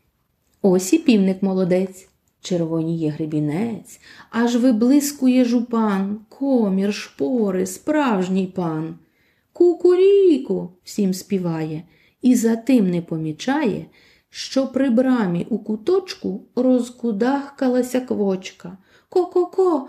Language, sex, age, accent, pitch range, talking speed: Ukrainian, female, 30-49, native, 190-275 Hz, 95 wpm